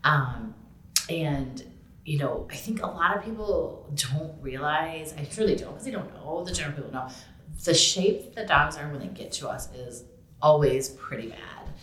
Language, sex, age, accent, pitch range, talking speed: English, female, 30-49, American, 125-150 Hz, 190 wpm